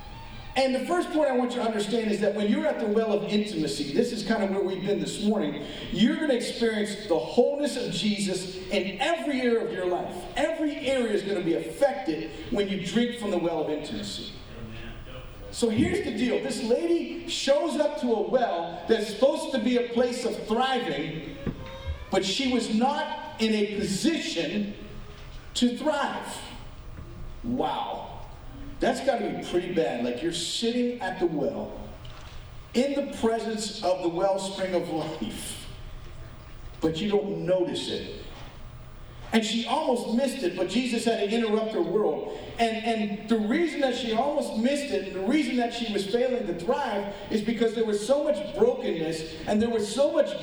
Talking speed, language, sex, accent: 180 wpm, English, male, American